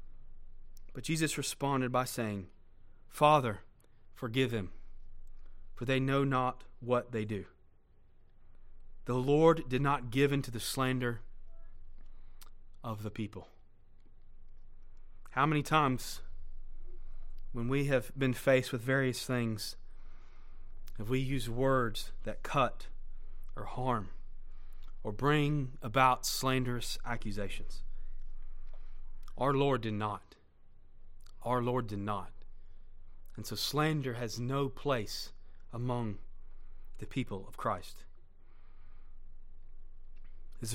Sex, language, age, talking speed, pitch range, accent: male, English, 30-49, 105 wpm, 90-140 Hz, American